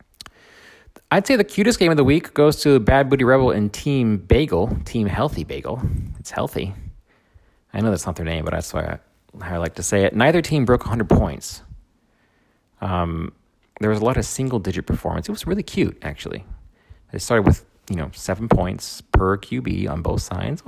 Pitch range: 90-115 Hz